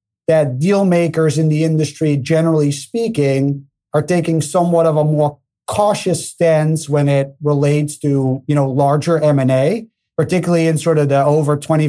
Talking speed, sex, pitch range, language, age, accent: 165 wpm, male, 135-160 Hz, English, 30-49, American